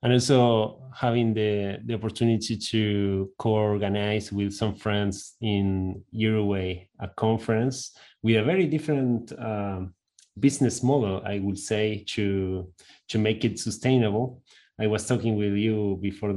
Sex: male